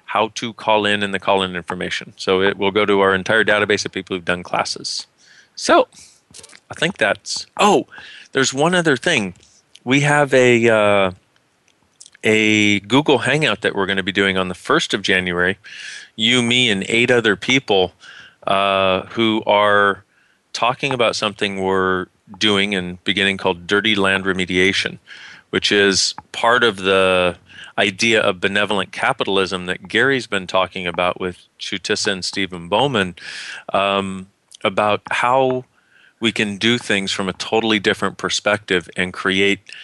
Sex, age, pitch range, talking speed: male, 40-59, 95-110 Hz, 150 wpm